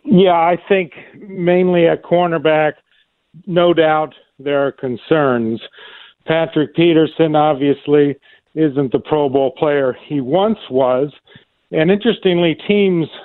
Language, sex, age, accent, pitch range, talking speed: English, male, 50-69, American, 140-165 Hz, 115 wpm